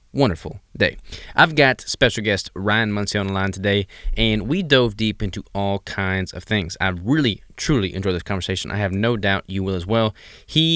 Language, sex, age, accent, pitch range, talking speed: English, male, 20-39, American, 95-110 Hz, 200 wpm